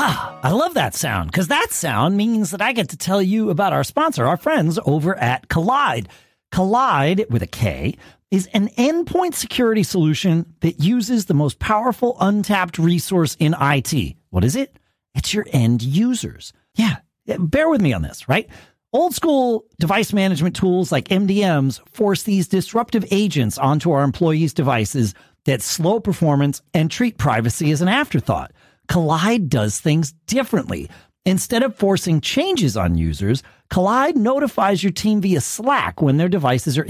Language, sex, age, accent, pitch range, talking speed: English, male, 40-59, American, 140-220 Hz, 160 wpm